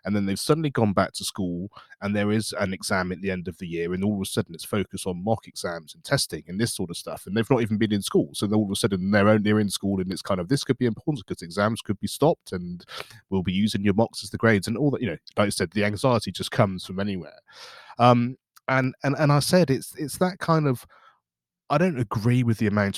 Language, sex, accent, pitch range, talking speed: English, male, British, 100-135 Hz, 275 wpm